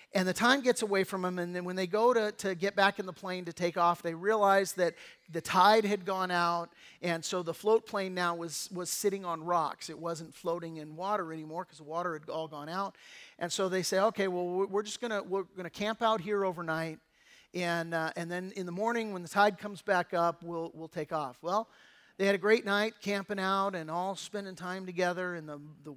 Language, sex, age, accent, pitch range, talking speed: English, male, 40-59, American, 170-200 Hz, 240 wpm